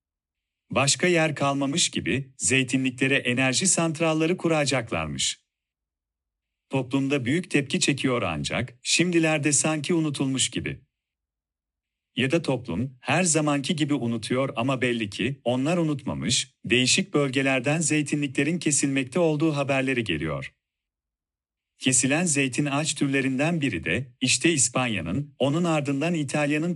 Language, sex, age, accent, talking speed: Turkish, male, 40-59, native, 105 wpm